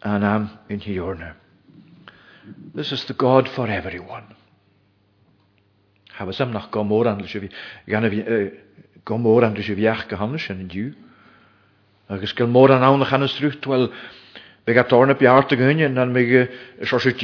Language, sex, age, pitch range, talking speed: English, male, 50-69, 100-130 Hz, 85 wpm